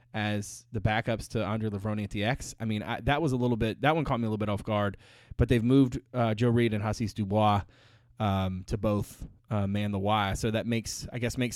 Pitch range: 105-125 Hz